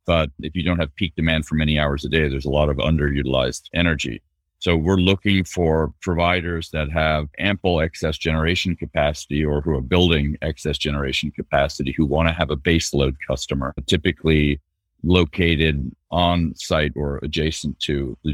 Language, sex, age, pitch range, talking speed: English, male, 40-59, 75-90 Hz, 170 wpm